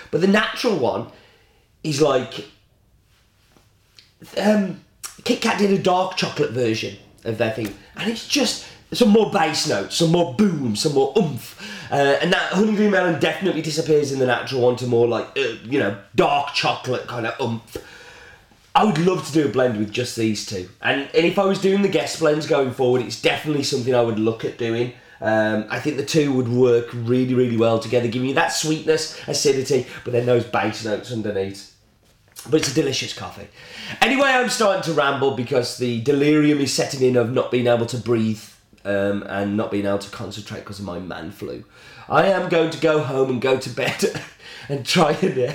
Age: 30-49